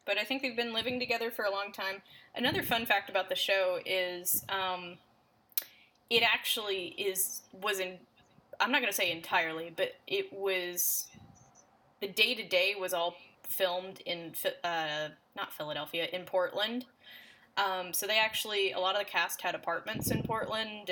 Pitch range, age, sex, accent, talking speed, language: 175-220 Hz, 10-29, female, American, 165 wpm, English